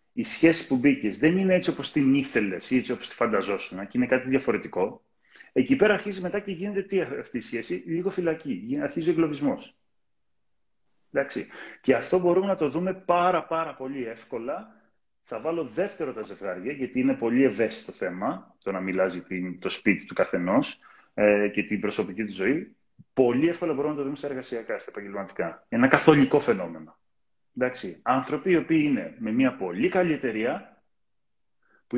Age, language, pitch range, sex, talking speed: 30-49, Greek, 120-185 Hz, male, 185 wpm